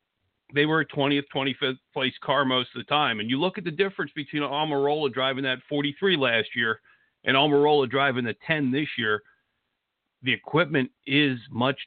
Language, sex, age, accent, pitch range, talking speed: English, male, 50-69, American, 130-150 Hz, 175 wpm